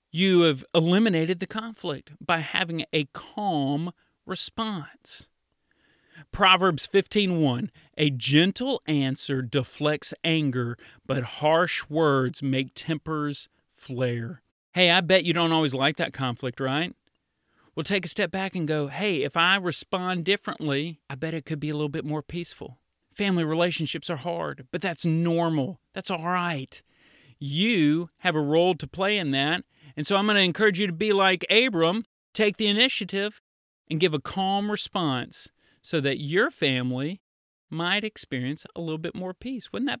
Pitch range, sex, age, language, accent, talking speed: 145-190 Hz, male, 40-59, English, American, 160 wpm